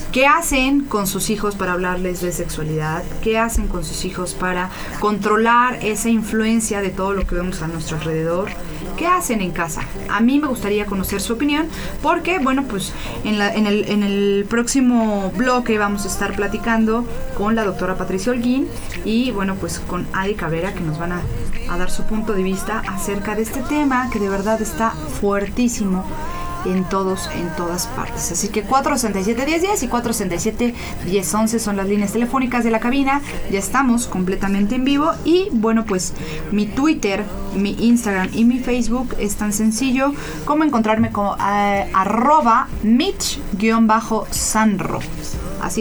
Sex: female